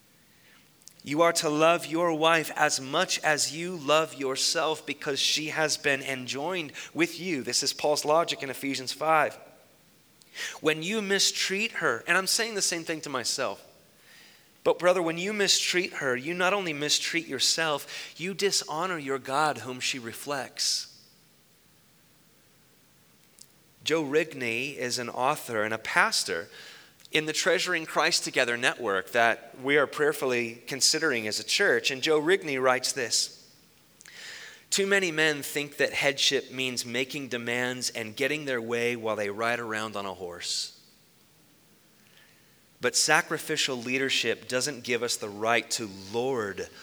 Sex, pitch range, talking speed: male, 125-160 Hz, 145 wpm